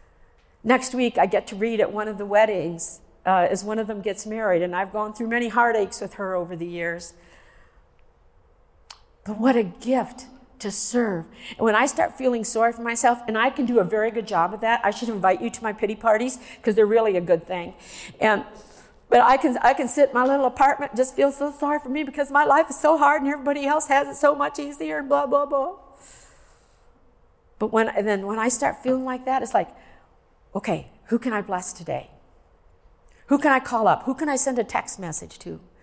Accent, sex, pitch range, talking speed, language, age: American, female, 205-270 Hz, 225 wpm, English, 50-69